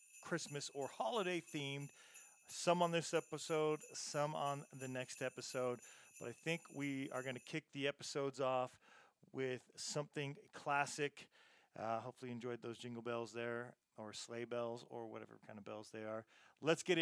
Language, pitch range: English, 125-150 Hz